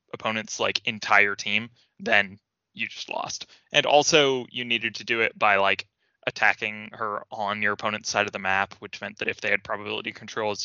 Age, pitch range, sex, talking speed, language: 20-39, 100-115 Hz, male, 190 wpm, English